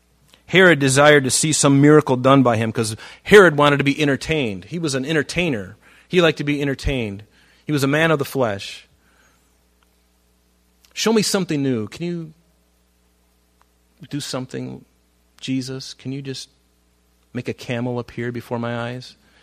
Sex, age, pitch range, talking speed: male, 30-49, 90-130 Hz, 155 wpm